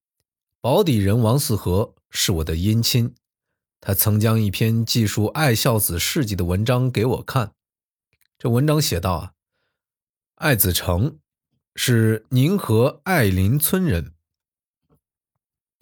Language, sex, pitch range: Chinese, male, 95-135 Hz